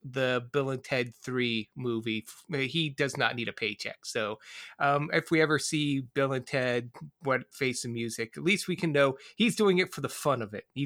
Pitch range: 135-195 Hz